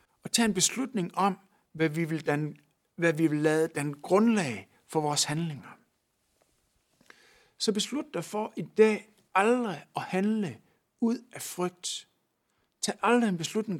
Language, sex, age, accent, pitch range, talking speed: Danish, male, 60-79, native, 160-230 Hz, 150 wpm